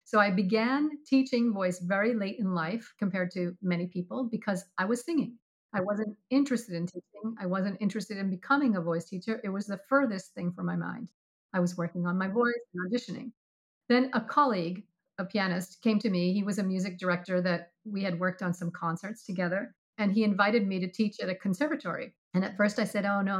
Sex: female